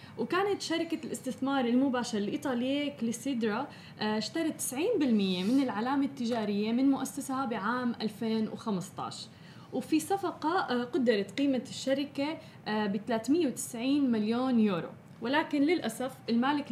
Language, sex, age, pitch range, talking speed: Arabic, female, 20-39, 215-270 Hz, 95 wpm